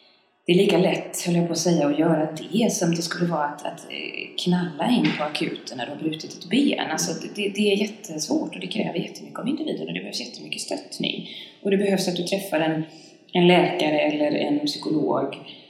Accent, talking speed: native, 215 wpm